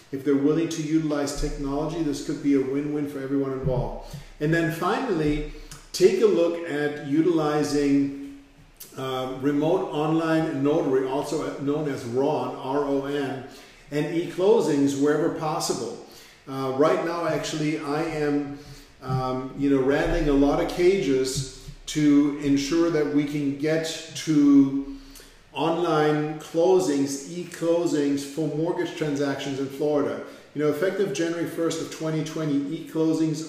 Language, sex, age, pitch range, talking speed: English, male, 50-69, 140-160 Hz, 130 wpm